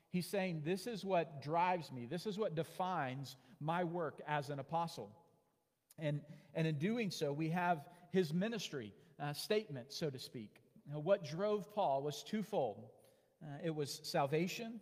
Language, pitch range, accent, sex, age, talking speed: English, 145-180 Hz, American, male, 40-59, 165 wpm